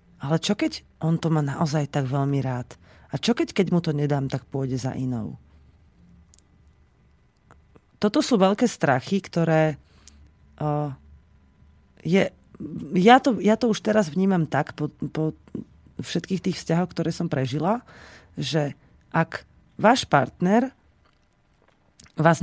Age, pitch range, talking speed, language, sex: 30-49, 125-180 Hz, 130 wpm, Slovak, female